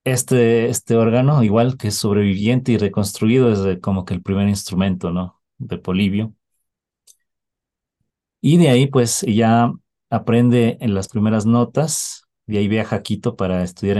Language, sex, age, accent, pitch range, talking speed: English, male, 40-59, Mexican, 100-120 Hz, 145 wpm